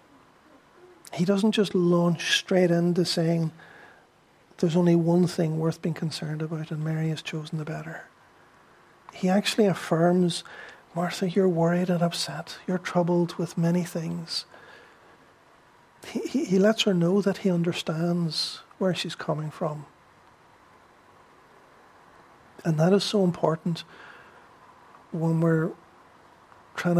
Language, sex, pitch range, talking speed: English, male, 165-185 Hz, 120 wpm